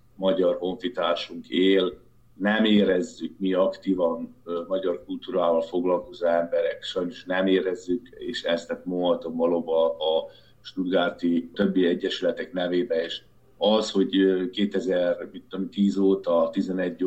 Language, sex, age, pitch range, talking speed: Hungarian, male, 50-69, 85-95 Hz, 115 wpm